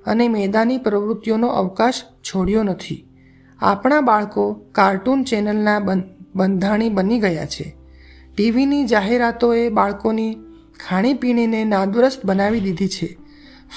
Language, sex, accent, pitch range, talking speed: Gujarati, male, native, 190-240 Hz, 90 wpm